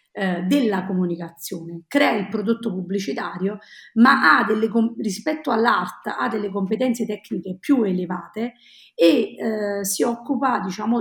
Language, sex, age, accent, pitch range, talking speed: Italian, female, 40-59, native, 190-245 Hz, 110 wpm